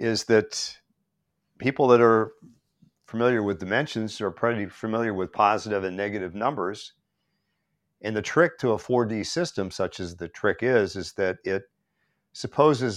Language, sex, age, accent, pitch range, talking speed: English, male, 50-69, American, 100-125 Hz, 150 wpm